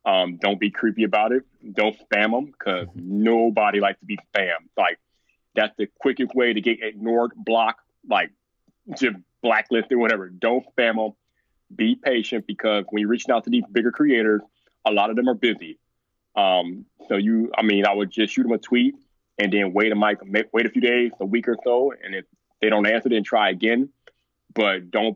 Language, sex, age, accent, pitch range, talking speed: English, male, 20-39, American, 105-140 Hz, 200 wpm